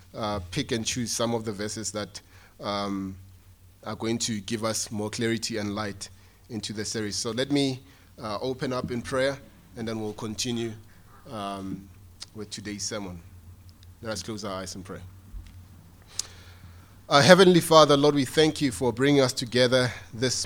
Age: 30-49